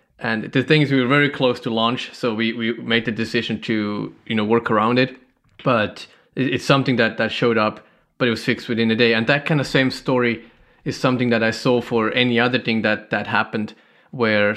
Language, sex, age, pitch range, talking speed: English, male, 20-39, 110-130 Hz, 225 wpm